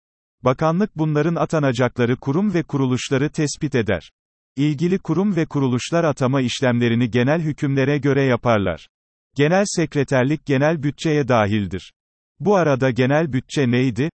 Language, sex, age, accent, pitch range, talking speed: Turkish, male, 40-59, native, 125-155 Hz, 120 wpm